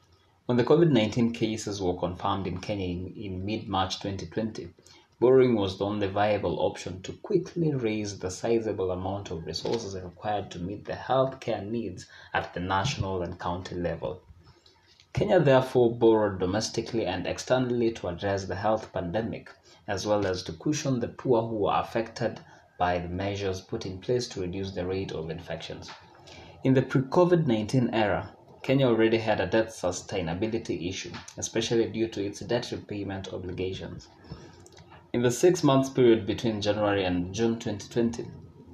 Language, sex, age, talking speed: English, male, 20-39, 150 wpm